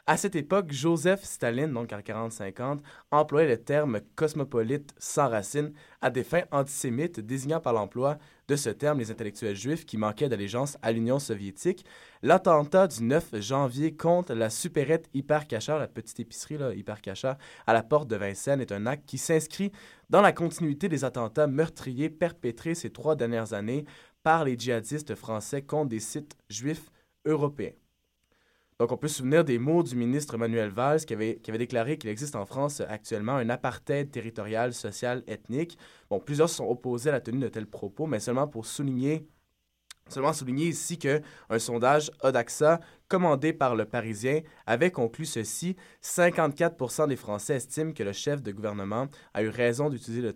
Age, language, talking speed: 20-39, French, 175 wpm